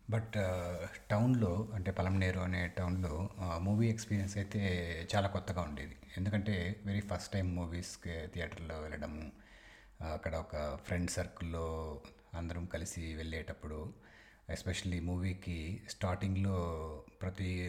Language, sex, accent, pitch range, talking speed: Telugu, male, native, 85-105 Hz, 100 wpm